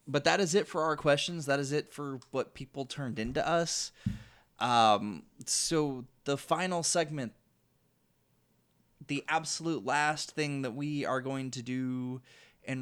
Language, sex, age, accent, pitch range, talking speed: English, male, 20-39, American, 115-140 Hz, 150 wpm